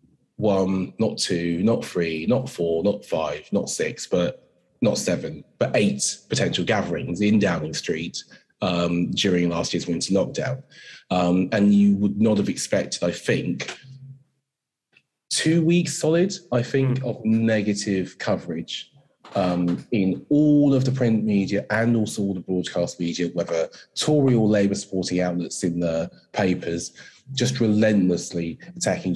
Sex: male